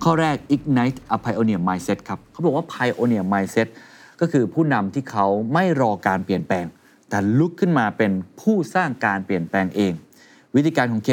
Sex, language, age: male, Thai, 20-39